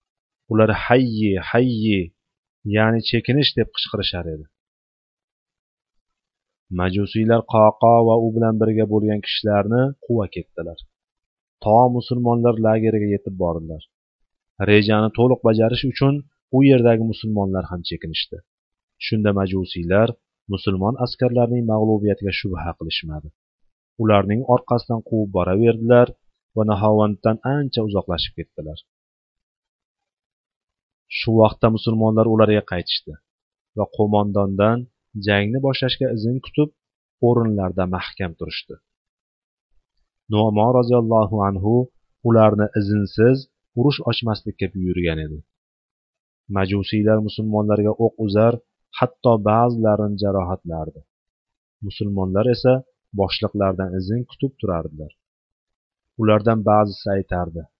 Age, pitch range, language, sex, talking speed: 30-49, 95-115 Hz, Bulgarian, male, 90 wpm